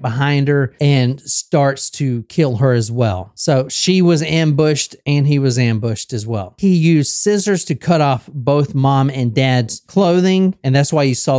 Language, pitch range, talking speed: English, 135-200 Hz, 185 wpm